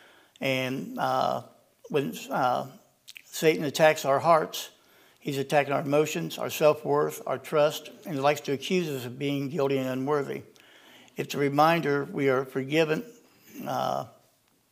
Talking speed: 140 wpm